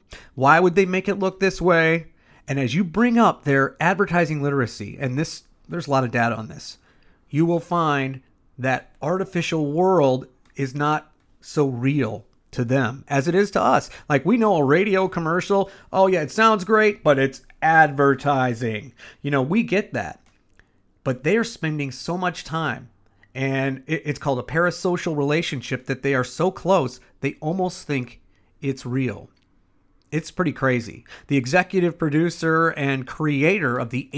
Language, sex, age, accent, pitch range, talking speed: English, male, 40-59, American, 130-175 Hz, 165 wpm